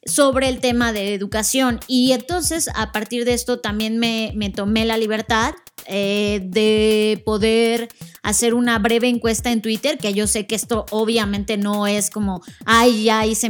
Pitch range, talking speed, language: 205-240 Hz, 170 wpm, Spanish